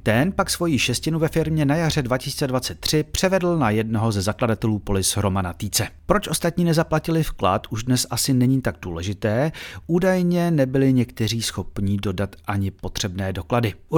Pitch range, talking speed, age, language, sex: 110-155 Hz, 155 wpm, 40-59, Czech, male